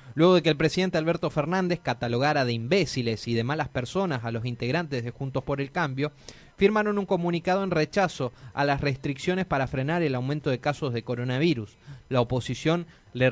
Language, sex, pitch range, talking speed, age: Spanish, male, 125-170 Hz, 185 wpm, 30-49